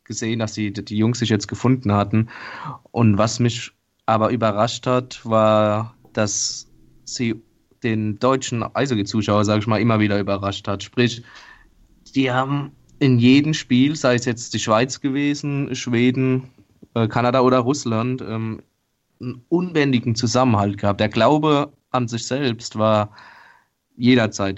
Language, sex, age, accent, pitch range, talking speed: German, male, 20-39, German, 105-125 Hz, 135 wpm